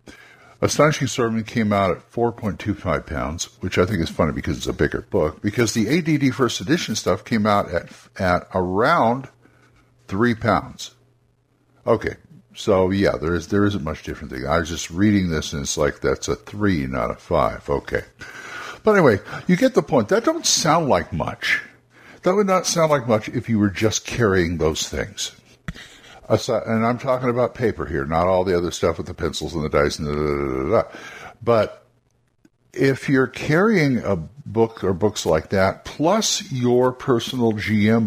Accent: American